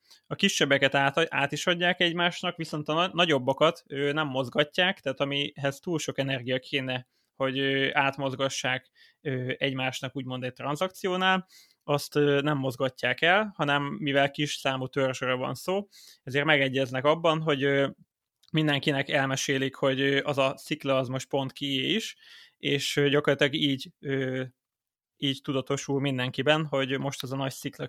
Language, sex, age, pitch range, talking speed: Hungarian, male, 20-39, 135-150 Hz, 155 wpm